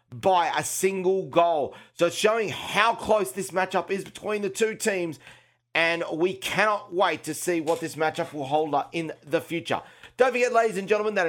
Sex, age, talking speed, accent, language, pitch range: male, 40-59, 195 wpm, Australian, English, 165-205 Hz